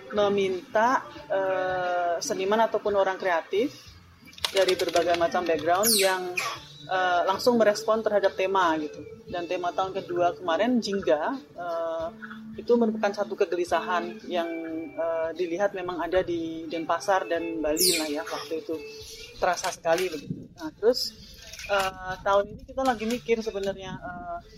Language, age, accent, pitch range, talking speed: Indonesian, 30-49, native, 180-220 Hz, 130 wpm